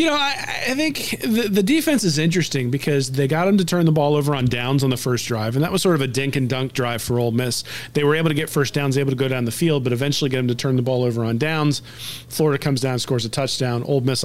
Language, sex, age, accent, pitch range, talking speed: English, male, 40-59, American, 125-150 Hz, 295 wpm